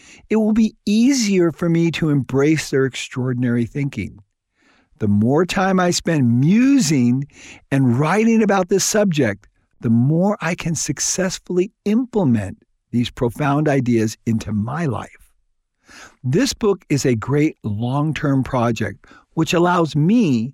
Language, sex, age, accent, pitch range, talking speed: English, male, 50-69, American, 120-180 Hz, 130 wpm